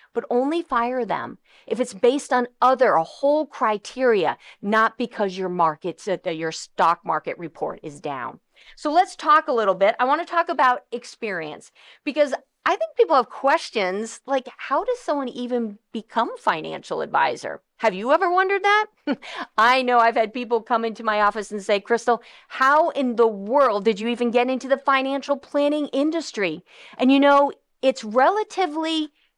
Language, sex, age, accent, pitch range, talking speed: English, female, 40-59, American, 205-295 Hz, 175 wpm